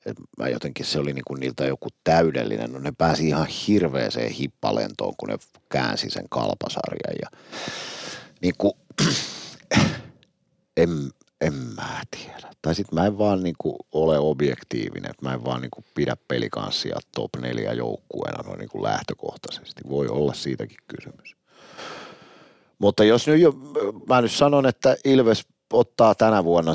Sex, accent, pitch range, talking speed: male, native, 70-105 Hz, 140 wpm